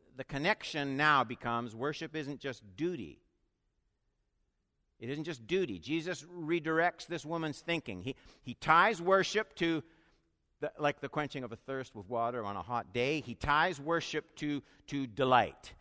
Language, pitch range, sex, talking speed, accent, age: English, 110-160 Hz, male, 150 wpm, American, 60-79